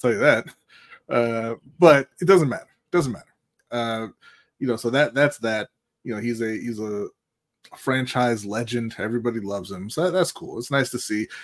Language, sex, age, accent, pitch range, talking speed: English, male, 20-39, American, 105-130 Hz, 195 wpm